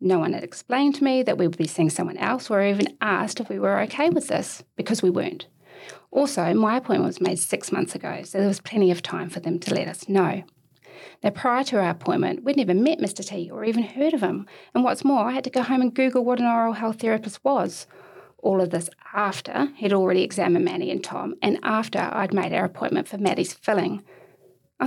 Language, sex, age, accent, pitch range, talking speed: English, female, 30-49, Australian, 185-255 Hz, 230 wpm